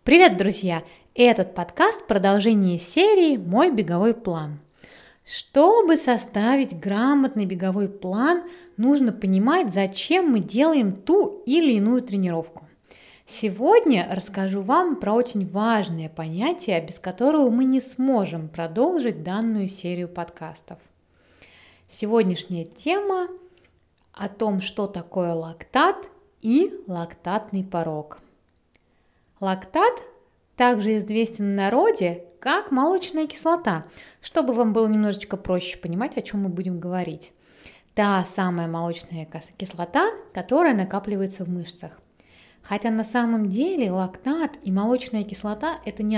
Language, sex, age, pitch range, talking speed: Russian, female, 20-39, 180-270 Hz, 110 wpm